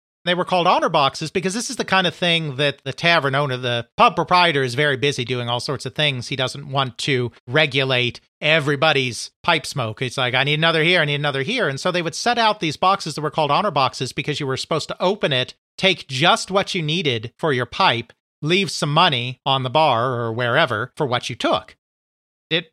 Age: 40-59